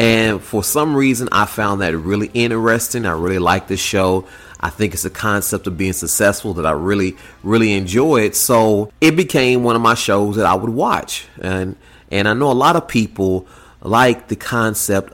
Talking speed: 195 wpm